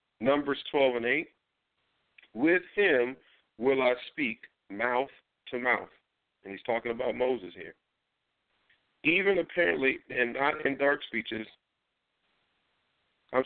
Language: English